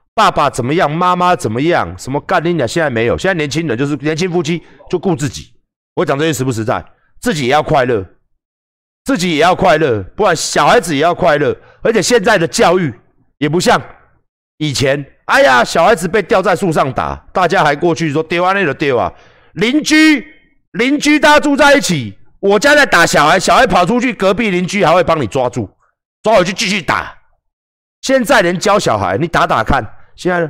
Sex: male